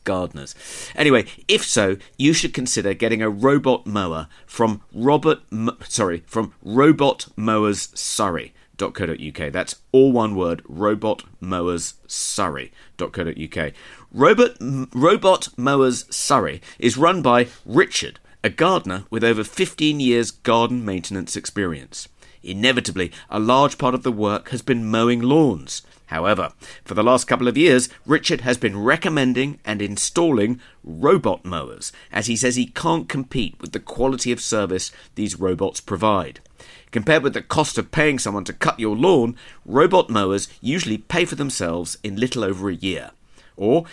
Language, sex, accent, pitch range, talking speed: English, male, British, 100-135 Hz, 145 wpm